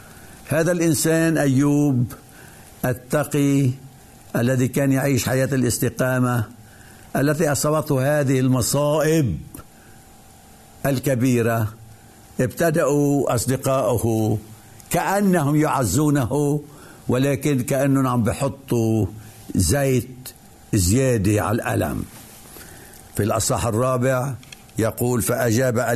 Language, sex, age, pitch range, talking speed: Arabic, male, 60-79, 120-150 Hz, 70 wpm